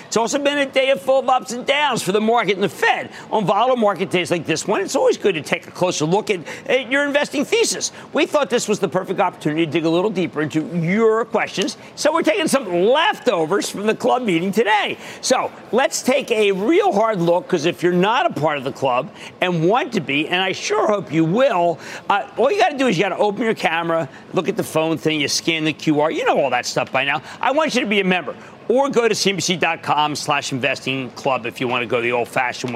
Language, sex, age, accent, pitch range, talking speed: English, male, 50-69, American, 165-235 Hz, 250 wpm